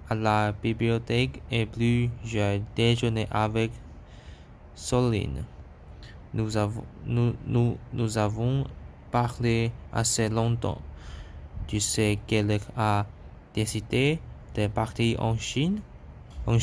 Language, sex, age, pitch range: Chinese, male, 20-39, 75-120 Hz